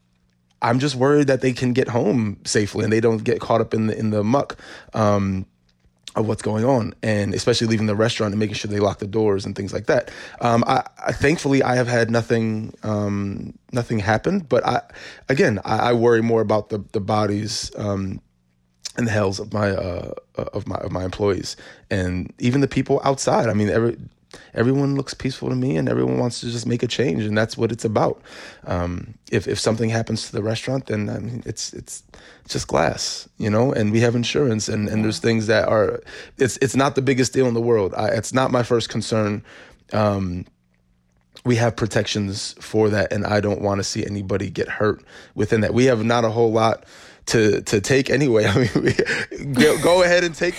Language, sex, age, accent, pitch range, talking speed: English, male, 20-39, American, 105-125 Hz, 210 wpm